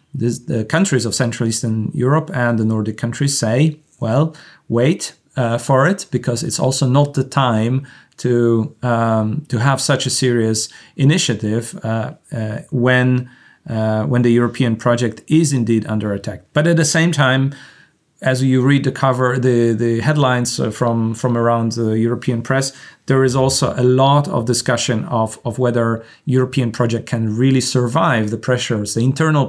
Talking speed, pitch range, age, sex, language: 165 wpm, 115-135 Hz, 30-49, male, English